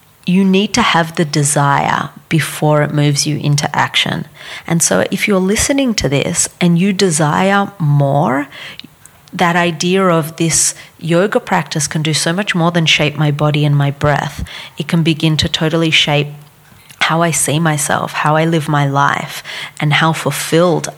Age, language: 30-49, English